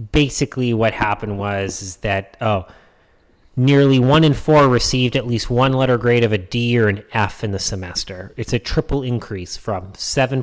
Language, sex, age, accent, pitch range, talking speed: English, male, 30-49, American, 105-135 Hz, 185 wpm